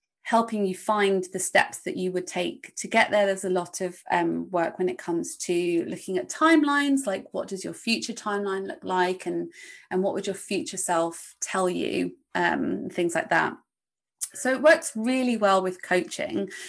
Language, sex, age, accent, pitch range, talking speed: English, female, 20-39, British, 185-225 Hz, 190 wpm